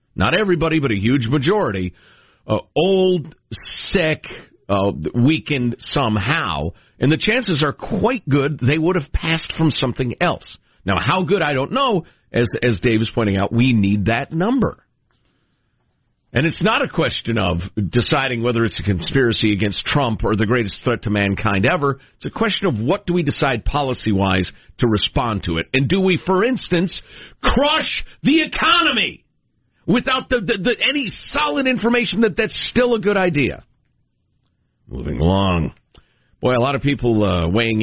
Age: 50-69